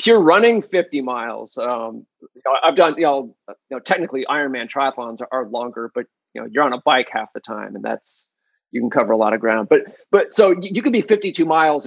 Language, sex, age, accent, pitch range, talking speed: English, male, 30-49, American, 135-185 Hz, 210 wpm